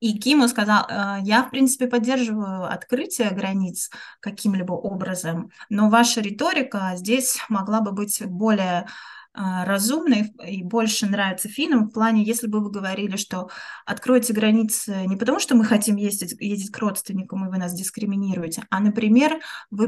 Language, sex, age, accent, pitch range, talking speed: Russian, female, 20-39, native, 190-225 Hz, 150 wpm